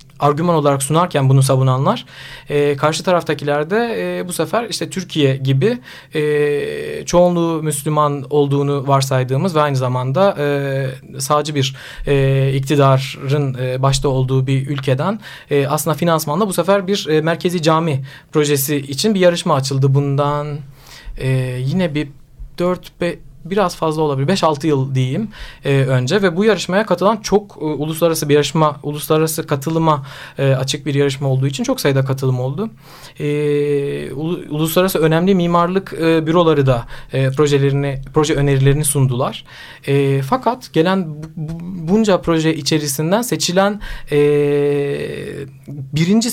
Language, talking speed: Turkish, 135 wpm